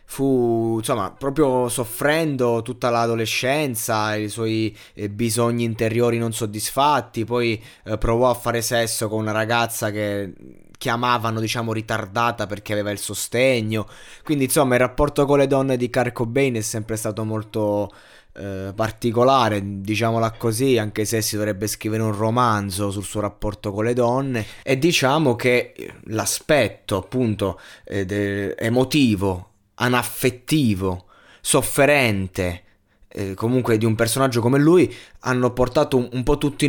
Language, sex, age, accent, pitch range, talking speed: Italian, male, 20-39, native, 105-130 Hz, 130 wpm